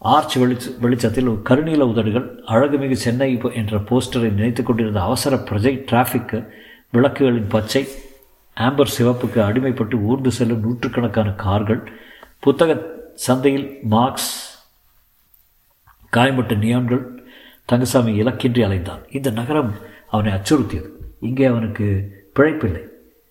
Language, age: Tamil, 50-69